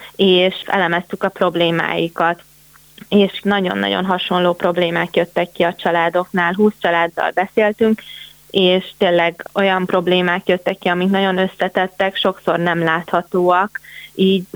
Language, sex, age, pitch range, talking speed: Hungarian, female, 20-39, 175-195 Hz, 115 wpm